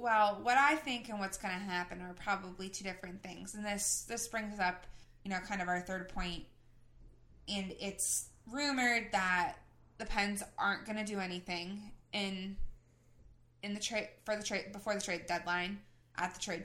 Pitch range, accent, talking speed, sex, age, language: 180-215 Hz, American, 185 wpm, female, 20-39, English